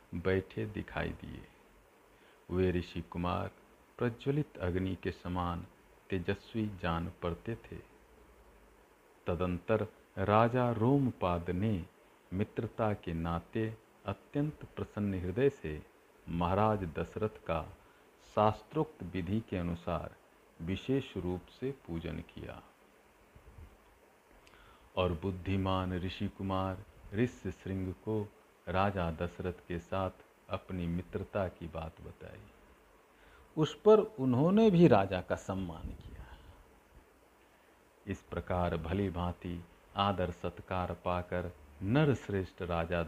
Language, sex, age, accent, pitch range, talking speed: Hindi, male, 50-69, native, 85-105 Hz, 95 wpm